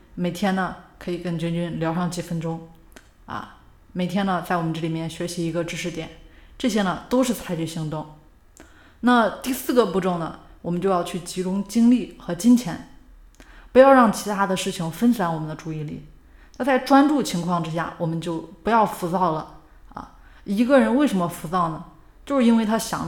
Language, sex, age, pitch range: Chinese, female, 20-39, 170-220 Hz